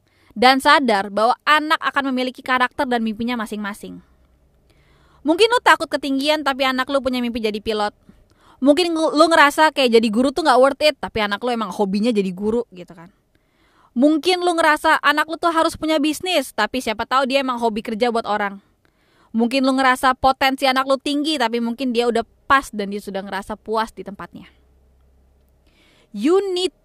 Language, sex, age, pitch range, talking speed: Indonesian, female, 20-39, 190-275 Hz, 175 wpm